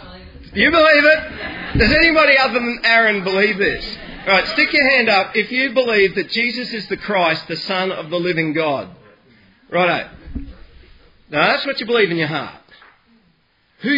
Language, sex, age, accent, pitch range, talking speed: English, male, 40-59, Australian, 140-225 Hz, 175 wpm